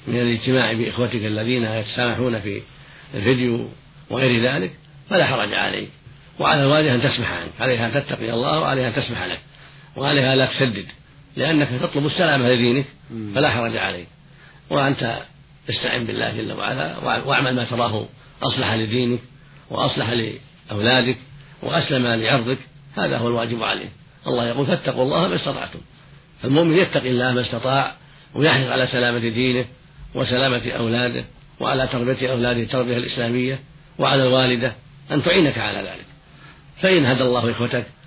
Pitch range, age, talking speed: 120-145 Hz, 50-69, 140 wpm